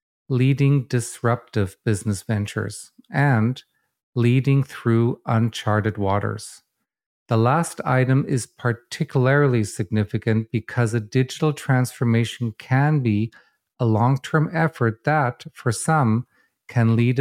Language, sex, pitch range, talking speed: English, male, 115-135 Hz, 100 wpm